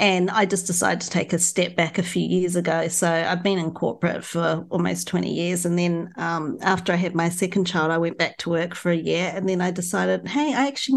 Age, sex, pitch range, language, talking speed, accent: 40-59, female, 170-200 Hz, English, 250 wpm, Australian